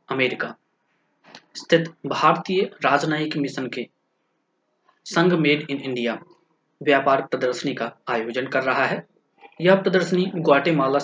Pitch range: 130-155 Hz